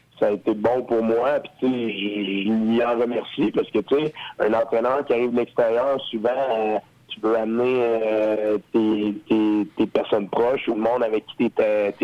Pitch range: 110-130 Hz